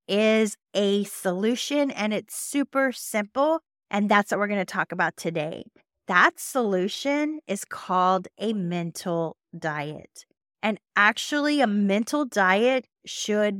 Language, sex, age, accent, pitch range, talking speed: English, female, 30-49, American, 185-245 Hz, 130 wpm